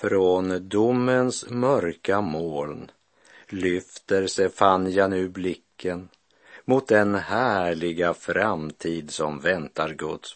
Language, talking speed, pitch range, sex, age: Swedish, 95 wpm, 85-110 Hz, male, 50-69